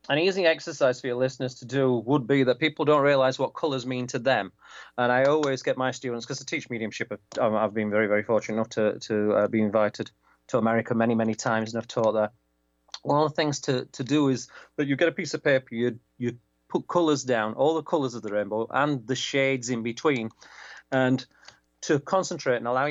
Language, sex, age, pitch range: English, male, 30-49, 115-140 Hz